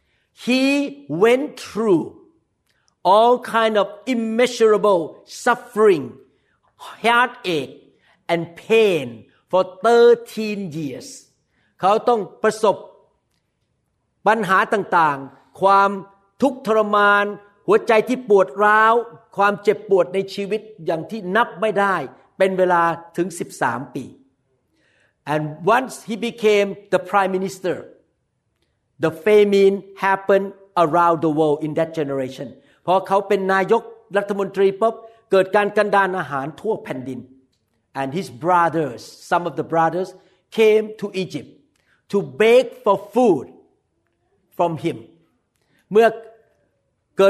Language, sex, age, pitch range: Thai, male, 50-69, 170-220 Hz